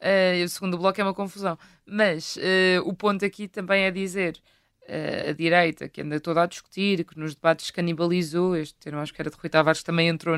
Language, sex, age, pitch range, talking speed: Portuguese, female, 20-39, 160-185 Hz, 215 wpm